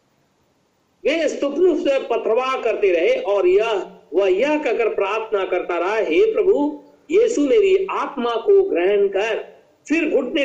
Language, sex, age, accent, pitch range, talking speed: Hindi, male, 50-69, native, 290-430 Hz, 120 wpm